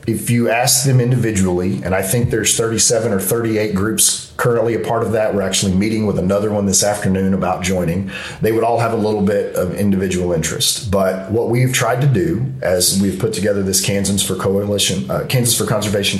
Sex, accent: male, American